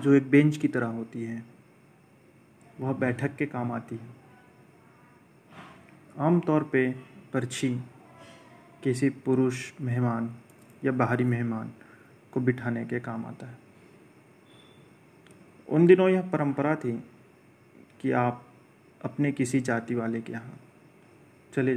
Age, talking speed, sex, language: 30-49, 115 wpm, male, Hindi